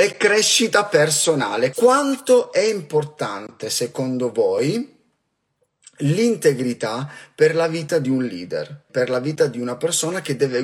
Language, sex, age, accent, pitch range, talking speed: Italian, male, 30-49, native, 135-210 Hz, 130 wpm